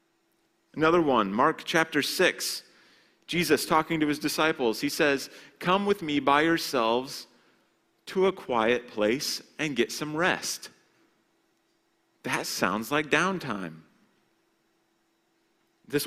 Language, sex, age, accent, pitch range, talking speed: English, male, 30-49, American, 110-160 Hz, 110 wpm